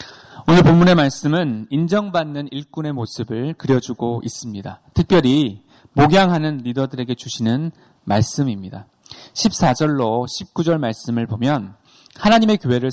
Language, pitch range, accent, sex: Korean, 120-175 Hz, native, male